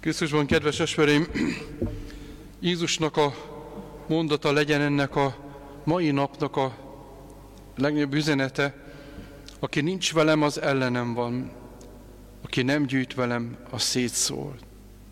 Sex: male